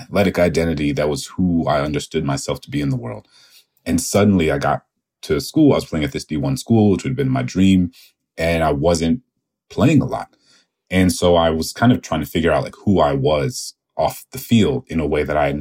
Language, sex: English, male